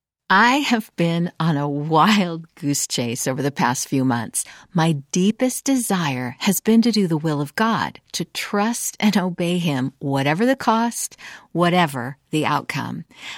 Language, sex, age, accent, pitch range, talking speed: English, female, 50-69, American, 155-240 Hz, 155 wpm